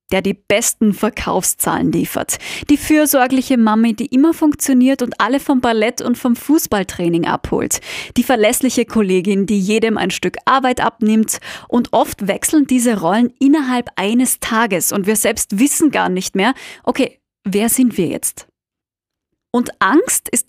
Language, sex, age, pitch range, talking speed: German, female, 20-39, 200-255 Hz, 150 wpm